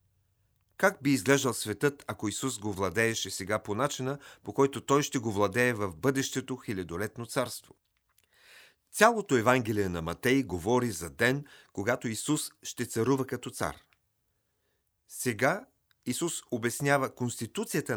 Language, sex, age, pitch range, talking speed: Bulgarian, male, 40-59, 105-140 Hz, 125 wpm